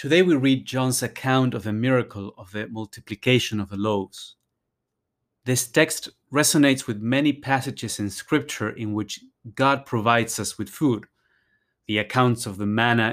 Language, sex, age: English, male, 30-49